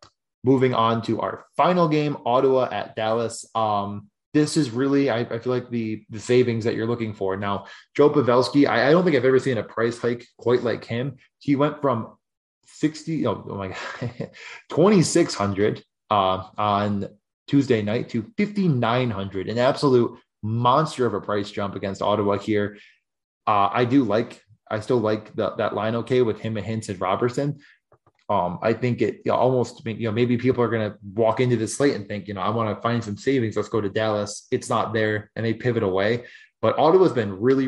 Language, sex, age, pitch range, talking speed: English, male, 20-39, 105-125 Hz, 195 wpm